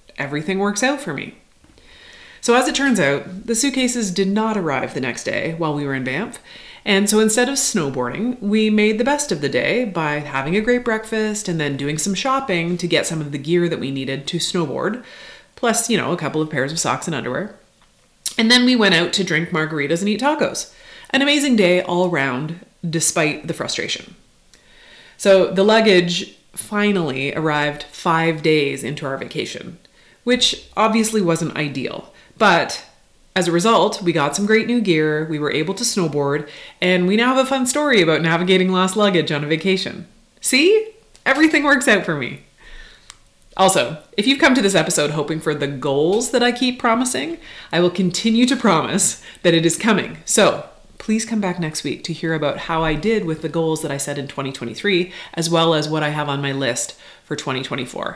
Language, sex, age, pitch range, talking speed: English, female, 30-49, 155-225 Hz, 195 wpm